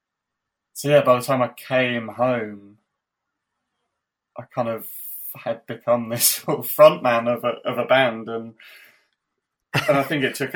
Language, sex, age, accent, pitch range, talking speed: English, male, 20-39, British, 115-130 Hz, 165 wpm